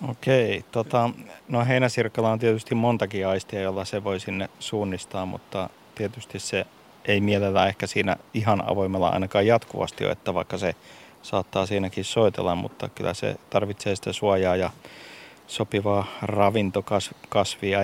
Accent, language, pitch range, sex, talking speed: native, Finnish, 100-110 Hz, male, 140 wpm